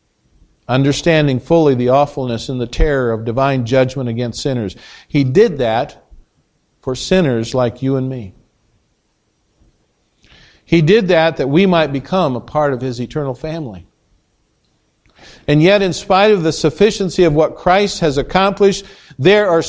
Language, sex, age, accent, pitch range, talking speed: English, male, 50-69, American, 145-200 Hz, 145 wpm